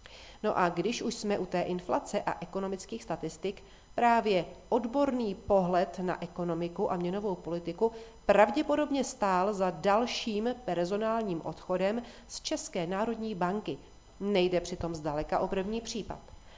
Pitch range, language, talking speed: 175-220 Hz, Czech, 125 wpm